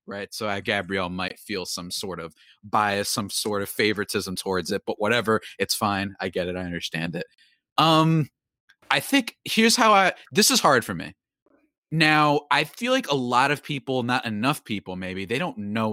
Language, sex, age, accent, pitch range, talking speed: English, male, 30-49, American, 95-140 Hz, 195 wpm